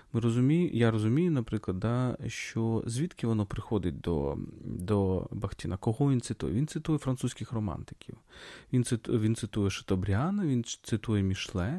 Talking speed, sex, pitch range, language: 130 wpm, male, 100-140 Hz, Ukrainian